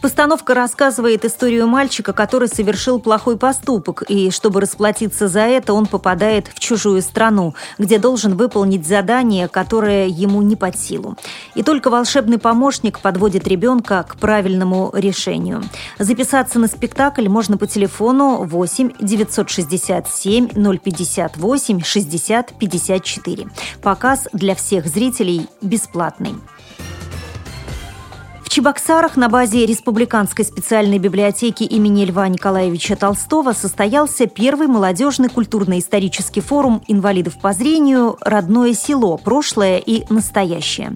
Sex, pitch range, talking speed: female, 190-235 Hz, 110 wpm